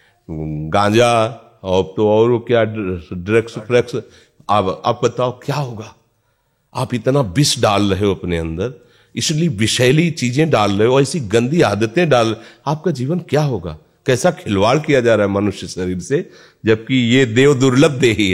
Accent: native